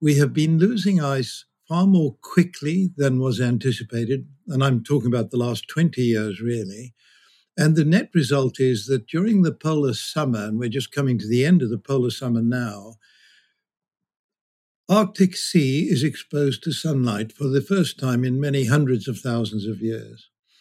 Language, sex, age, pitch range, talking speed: English, male, 60-79, 120-155 Hz, 170 wpm